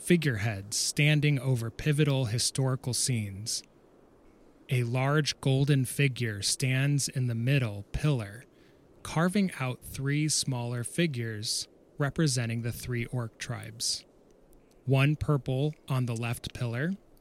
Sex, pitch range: male, 120-145 Hz